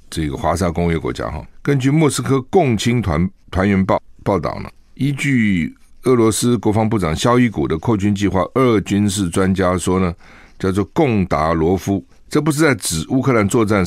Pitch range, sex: 90-115 Hz, male